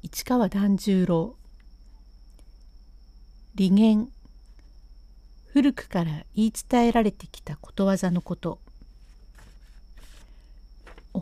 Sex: female